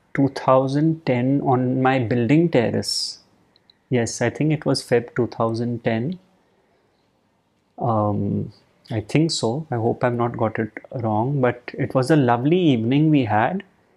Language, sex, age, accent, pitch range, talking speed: English, male, 30-49, Indian, 115-145 Hz, 140 wpm